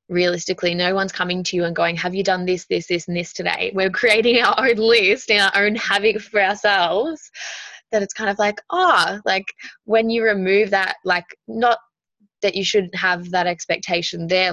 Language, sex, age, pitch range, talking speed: English, female, 10-29, 170-200 Hz, 200 wpm